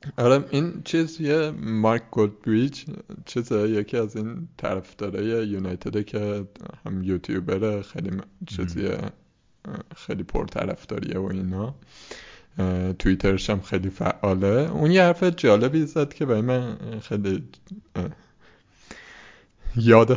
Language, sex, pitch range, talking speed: Persian, male, 100-140 Hz, 105 wpm